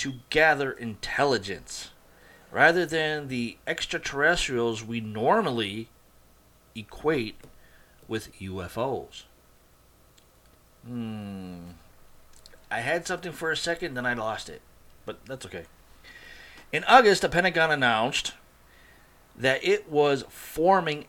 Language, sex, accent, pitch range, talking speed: English, male, American, 105-155 Hz, 100 wpm